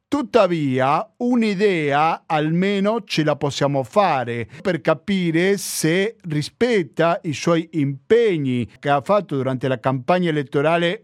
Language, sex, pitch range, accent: Italian, male, 140-180 Hz, native